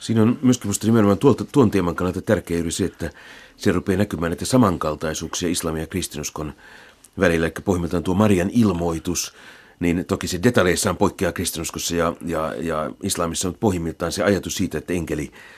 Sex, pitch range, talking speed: male, 85-100 Hz, 170 wpm